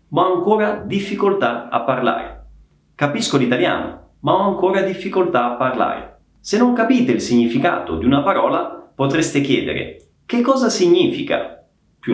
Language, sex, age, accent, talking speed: Italian, male, 30-49, native, 140 wpm